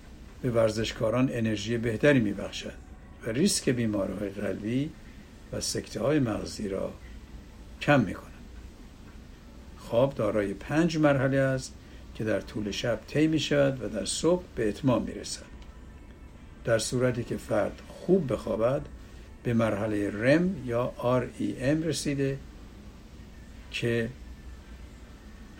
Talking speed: 110 wpm